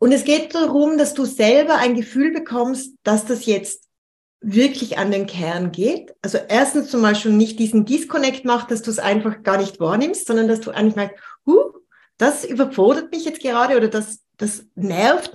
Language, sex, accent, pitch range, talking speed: German, female, German, 210-265 Hz, 190 wpm